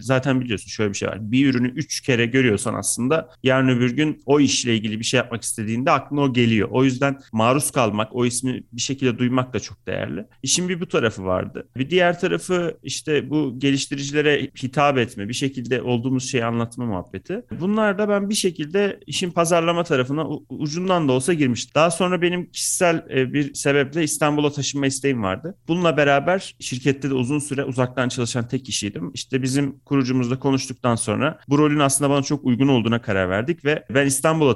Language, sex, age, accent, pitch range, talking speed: Turkish, male, 40-59, native, 120-145 Hz, 185 wpm